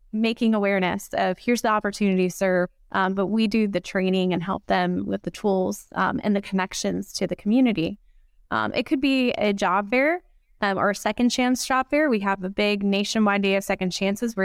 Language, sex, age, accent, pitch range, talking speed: English, female, 20-39, American, 195-230 Hz, 210 wpm